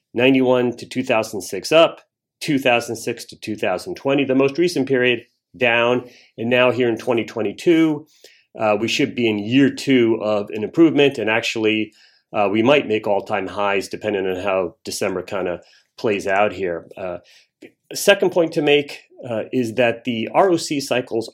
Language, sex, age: English, male, 40-59